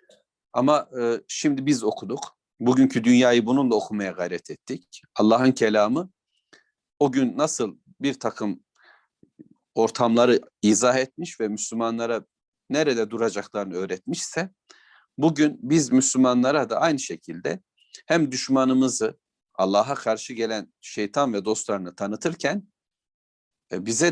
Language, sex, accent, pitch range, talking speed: Turkish, male, native, 115-155 Hz, 100 wpm